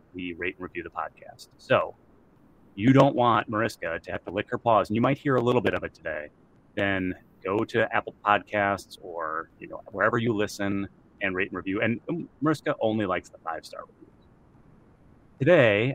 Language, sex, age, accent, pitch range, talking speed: English, male, 30-49, American, 100-125 Hz, 190 wpm